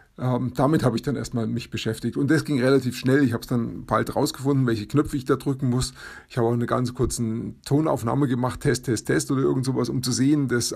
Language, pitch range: German, 115-140 Hz